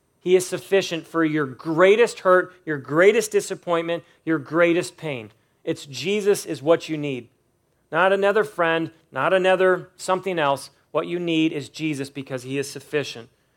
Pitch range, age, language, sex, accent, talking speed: 145-180 Hz, 40-59, English, male, American, 155 wpm